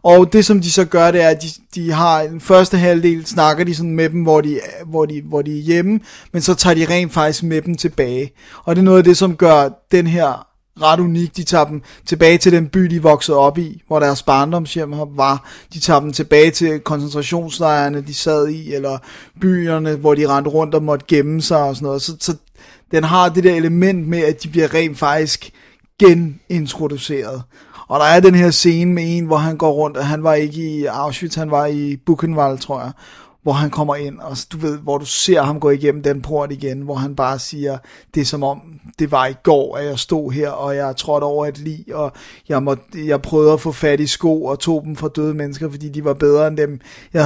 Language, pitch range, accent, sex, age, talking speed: Danish, 145-165 Hz, native, male, 30-49, 235 wpm